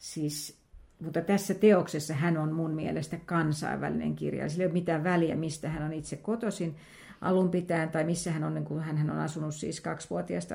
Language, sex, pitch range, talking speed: Finnish, female, 160-190 Hz, 180 wpm